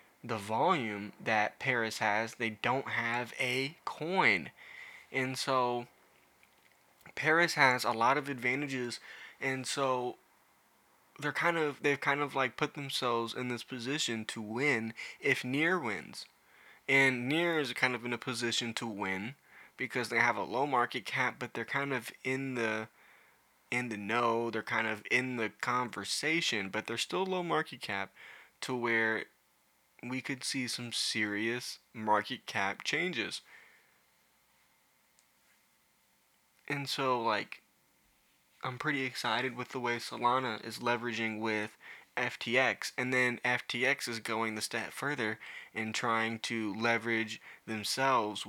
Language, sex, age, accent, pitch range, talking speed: English, male, 20-39, American, 110-130 Hz, 140 wpm